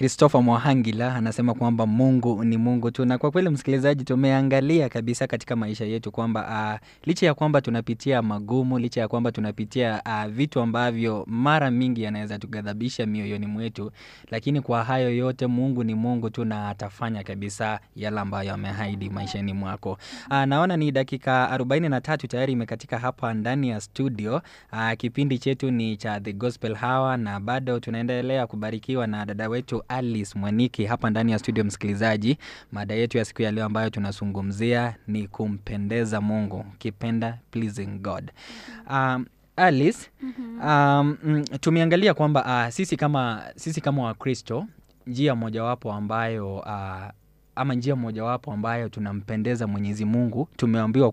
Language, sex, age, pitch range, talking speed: Swahili, male, 20-39, 110-130 Hz, 145 wpm